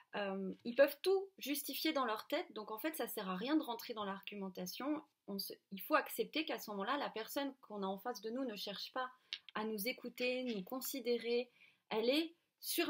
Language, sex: French, female